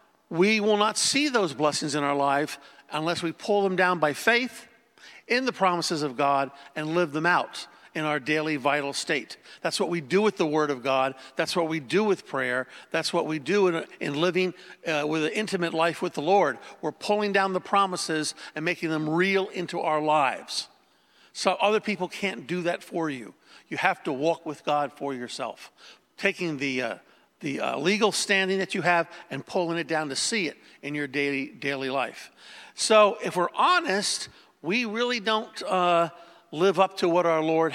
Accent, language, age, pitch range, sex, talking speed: American, English, 50-69, 150-195 Hz, male, 195 wpm